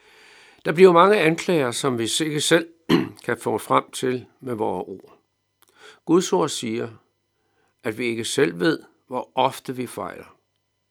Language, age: Danish, 60-79